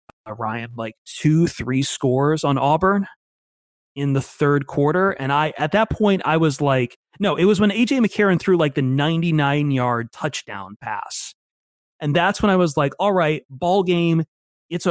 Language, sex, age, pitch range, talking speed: English, male, 30-49, 130-175 Hz, 175 wpm